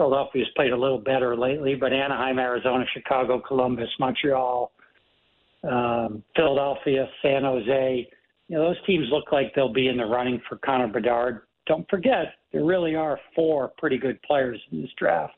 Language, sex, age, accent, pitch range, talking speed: English, male, 60-79, American, 130-165 Hz, 155 wpm